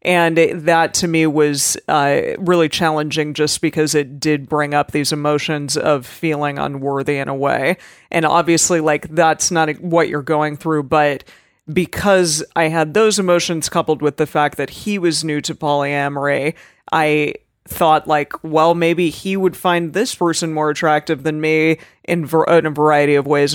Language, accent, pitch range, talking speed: English, American, 145-170 Hz, 175 wpm